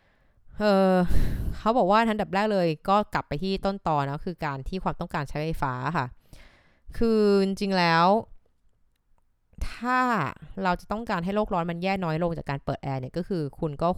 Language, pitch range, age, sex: Thai, 150-195 Hz, 20-39, female